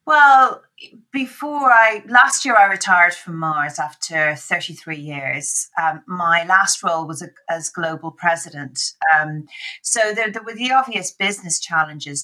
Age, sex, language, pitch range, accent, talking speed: 40-59, female, English, 155-185 Hz, British, 145 wpm